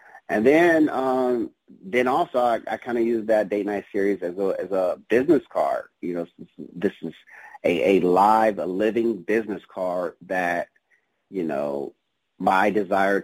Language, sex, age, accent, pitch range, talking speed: English, male, 40-59, American, 95-125 Hz, 165 wpm